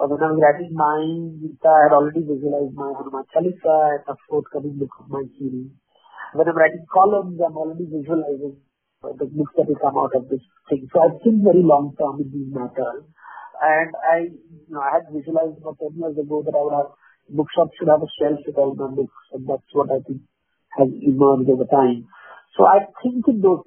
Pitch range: 140-170 Hz